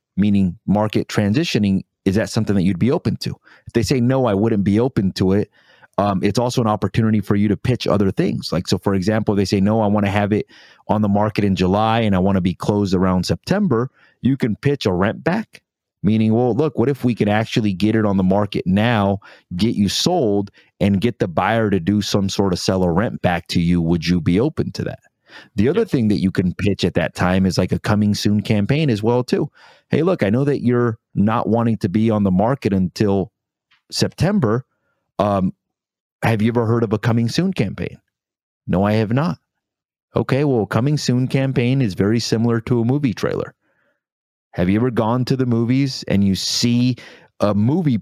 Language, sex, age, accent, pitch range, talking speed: English, male, 30-49, American, 100-120 Hz, 210 wpm